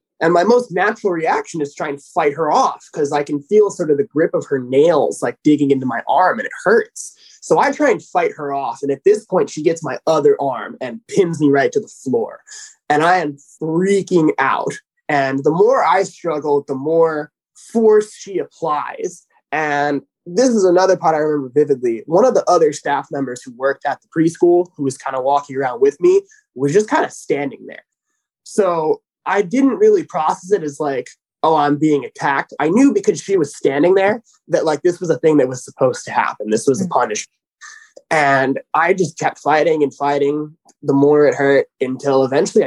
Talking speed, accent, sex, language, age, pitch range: 210 wpm, American, male, English, 20-39, 140-225 Hz